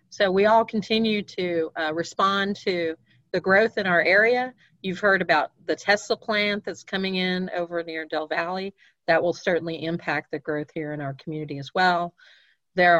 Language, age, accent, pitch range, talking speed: English, 40-59, American, 170-210 Hz, 180 wpm